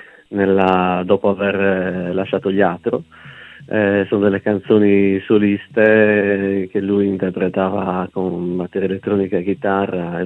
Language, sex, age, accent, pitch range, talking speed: Italian, male, 30-49, native, 100-115 Hz, 110 wpm